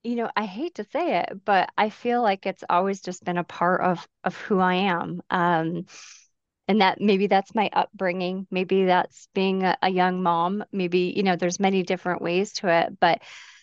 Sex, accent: female, American